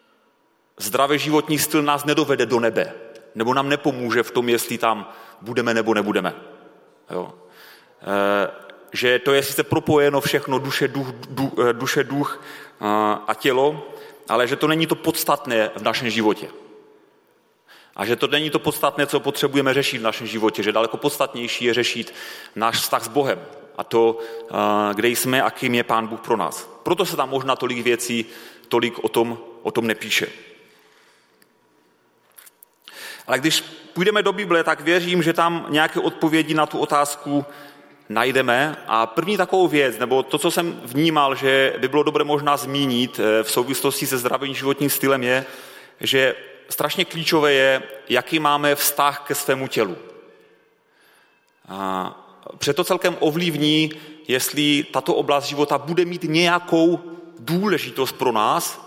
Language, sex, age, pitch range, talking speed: Czech, male, 30-49, 120-160 Hz, 145 wpm